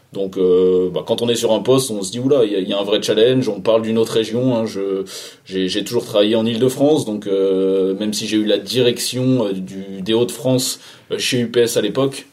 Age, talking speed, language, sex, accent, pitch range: 20-39, 260 wpm, French, male, French, 95-125 Hz